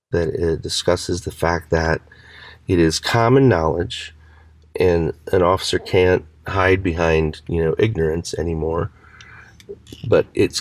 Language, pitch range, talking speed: English, 75-90 Hz, 125 wpm